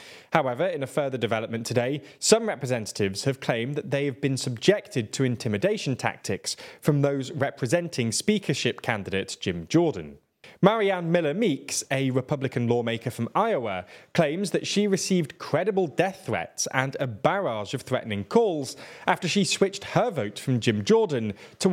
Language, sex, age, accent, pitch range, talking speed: English, male, 20-39, British, 120-170 Hz, 150 wpm